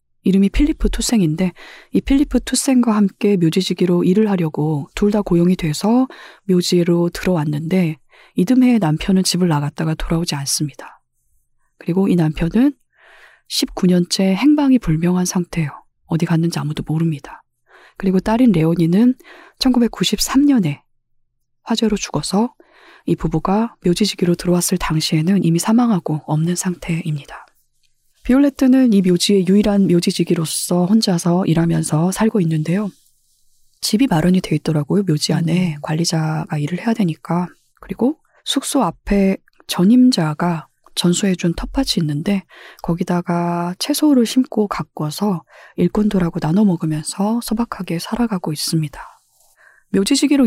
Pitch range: 165-220 Hz